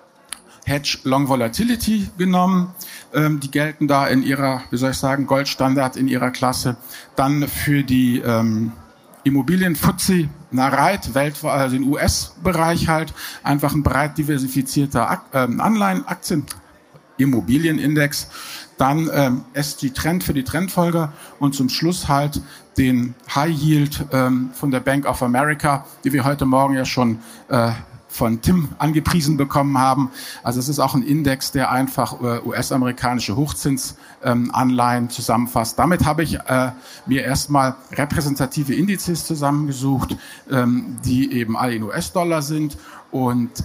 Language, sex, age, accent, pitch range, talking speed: German, male, 50-69, German, 120-150 Hz, 135 wpm